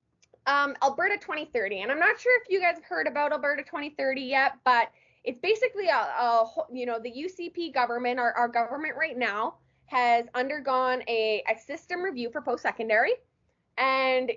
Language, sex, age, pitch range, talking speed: English, female, 20-39, 240-315 Hz, 165 wpm